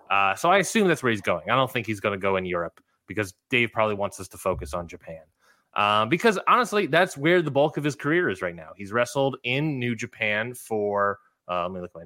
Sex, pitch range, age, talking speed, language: male, 105-145 Hz, 20-39, 255 wpm, English